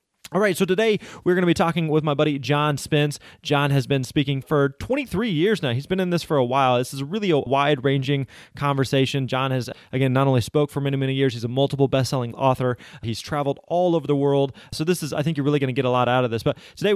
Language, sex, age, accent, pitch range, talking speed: English, male, 30-49, American, 130-160 Hz, 260 wpm